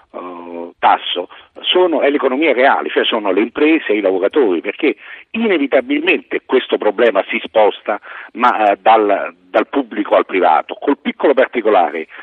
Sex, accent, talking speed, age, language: male, native, 130 wpm, 50-69, Italian